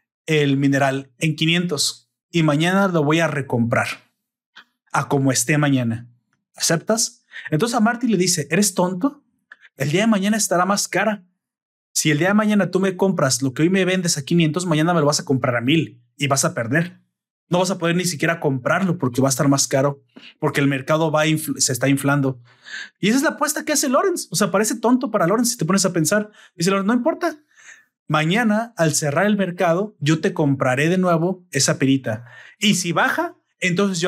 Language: Spanish